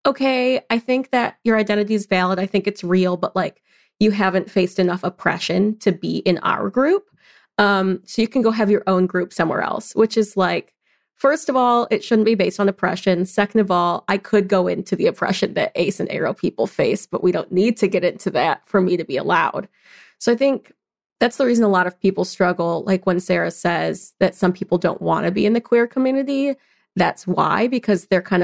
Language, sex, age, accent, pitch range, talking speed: English, female, 30-49, American, 180-220 Hz, 225 wpm